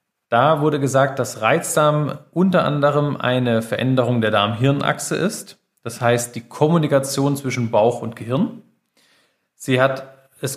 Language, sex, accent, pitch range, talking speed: German, male, German, 120-150 Hz, 130 wpm